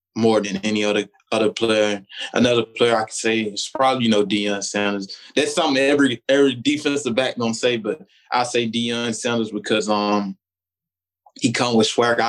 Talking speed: 175 wpm